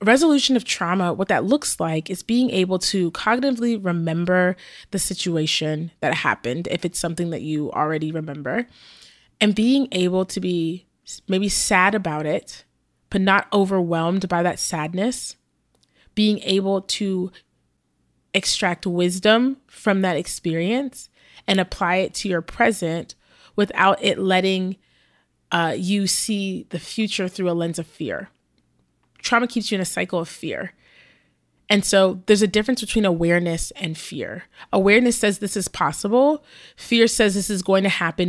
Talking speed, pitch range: 150 wpm, 170-205 Hz